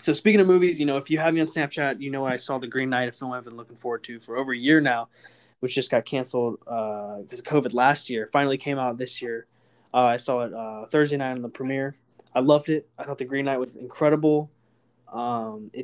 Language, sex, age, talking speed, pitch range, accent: English, male, 20-39, 255 wpm, 125-150 Hz, American